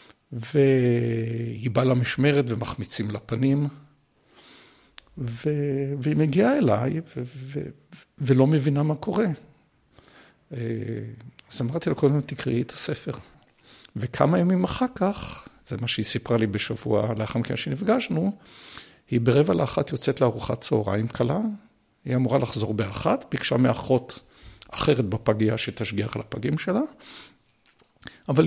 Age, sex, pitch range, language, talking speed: 60-79, male, 115-155 Hz, Hebrew, 120 wpm